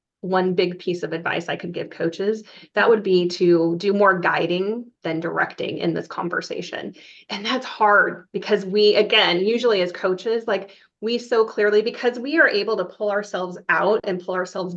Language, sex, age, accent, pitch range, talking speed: English, female, 30-49, American, 180-220 Hz, 185 wpm